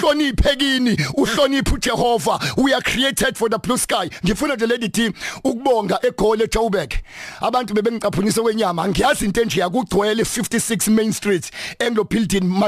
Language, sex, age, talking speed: English, male, 50-69, 65 wpm